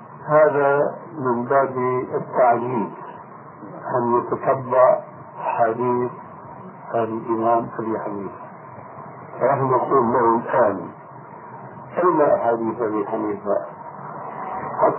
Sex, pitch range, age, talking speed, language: male, 120-150 Hz, 60-79, 70 wpm, Arabic